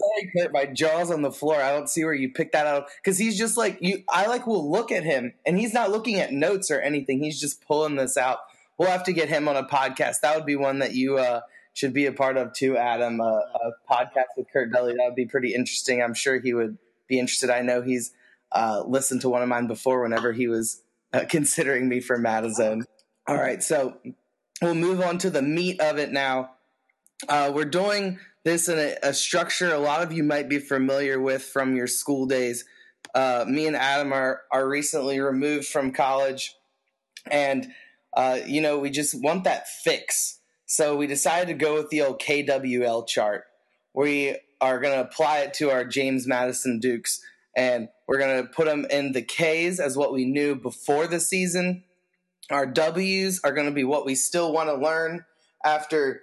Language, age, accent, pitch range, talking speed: English, 20-39, American, 130-160 Hz, 205 wpm